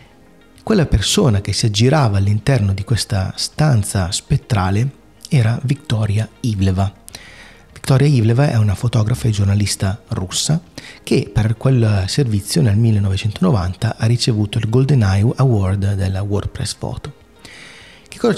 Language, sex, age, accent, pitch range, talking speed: Italian, male, 30-49, native, 105-125 Hz, 125 wpm